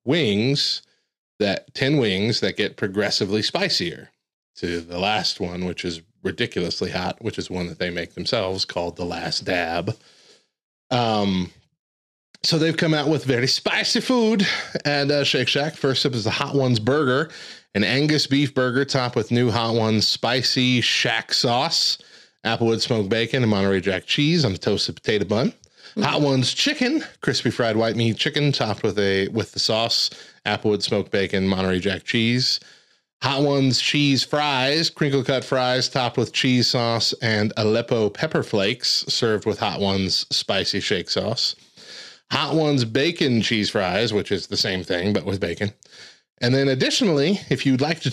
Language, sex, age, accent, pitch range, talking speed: English, male, 30-49, American, 105-145 Hz, 165 wpm